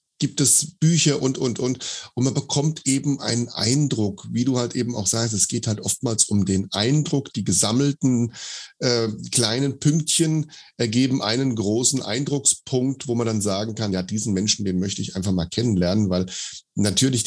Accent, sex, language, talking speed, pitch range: German, male, German, 175 wpm, 100-125 Hz